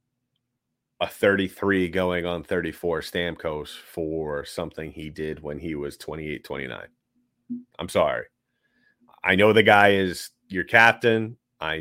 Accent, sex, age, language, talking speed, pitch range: American, male, 30-49, English, 125 wpm, 85-115 Hz